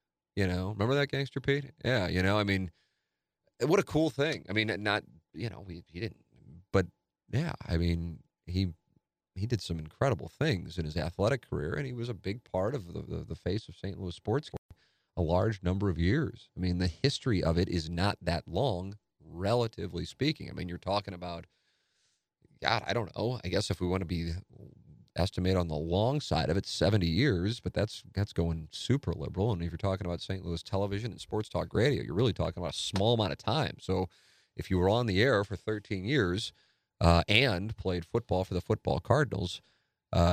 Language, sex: English, male